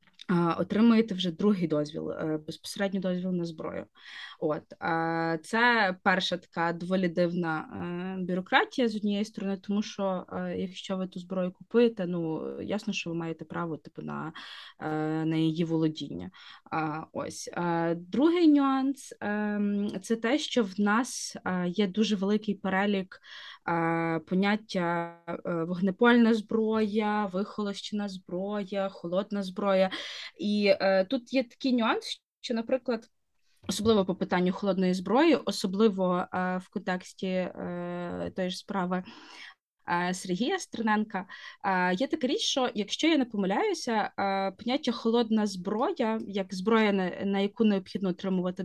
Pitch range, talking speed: 175-220 Hz, 115 wpm